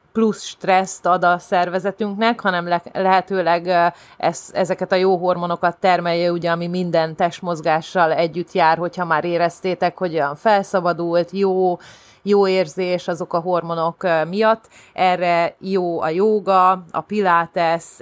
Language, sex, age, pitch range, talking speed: Hungarian, female, 30-49, 165-190 Hz, 125 wpm